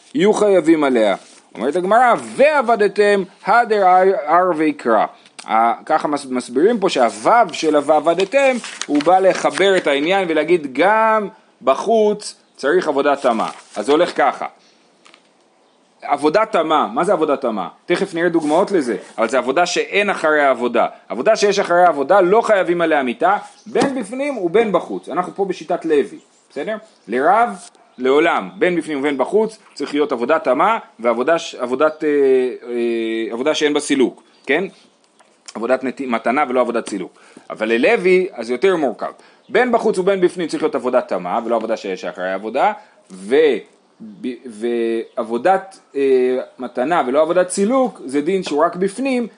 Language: Hebrew